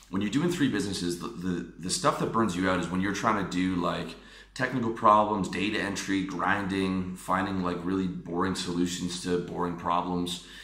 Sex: male